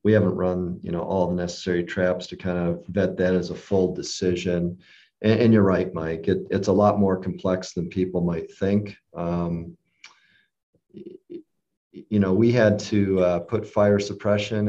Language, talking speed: English, 170 wpm